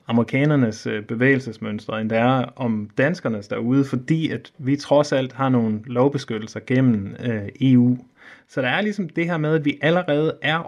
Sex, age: male, 30-49